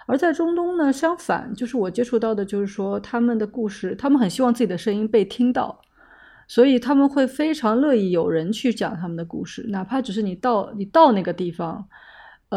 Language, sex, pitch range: Chinese, female, 195-245 Hz